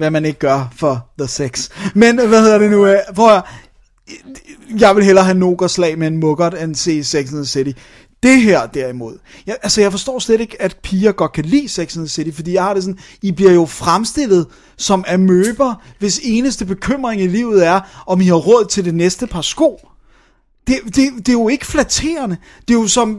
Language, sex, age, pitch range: Danish, male, 30-49, 170-210 Hz